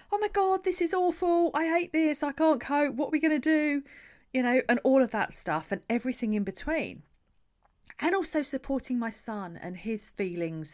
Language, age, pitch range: English, 40-59, 165-230 Hz